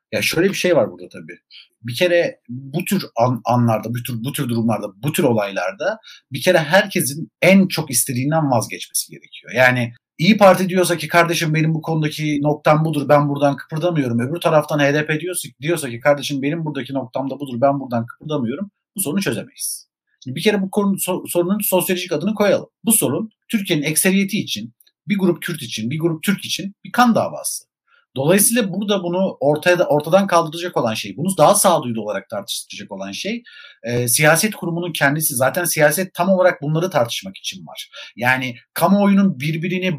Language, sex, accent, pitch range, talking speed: Turkish, male, native, 135-185 Hz, 175 wpm